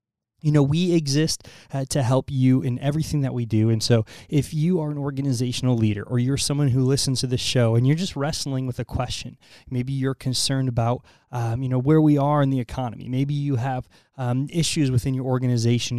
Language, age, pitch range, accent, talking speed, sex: English, 20-39, 115-145 Hz, American, 215 wpm, male